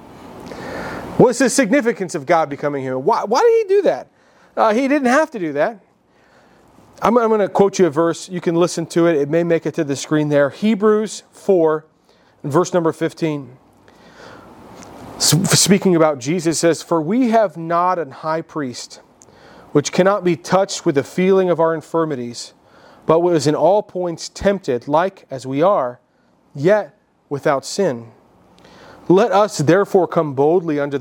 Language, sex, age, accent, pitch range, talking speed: English, male, 40-59, American, 140-185 Hz, 165 wpm